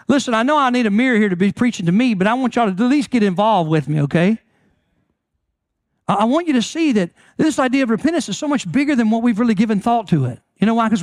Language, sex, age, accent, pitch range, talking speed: English, male, 50-69, American, 180-235 Hz, 280 wpm